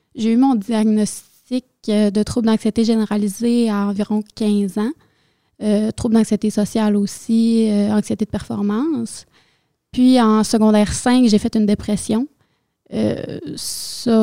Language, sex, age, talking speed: French, female, 20-39, 125 wpm